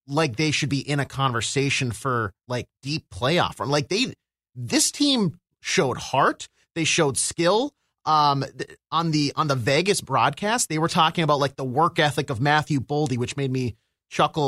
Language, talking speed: English, 180 wpm